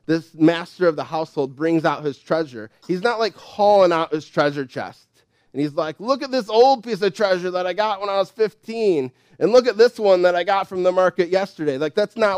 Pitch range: 145-205 Hz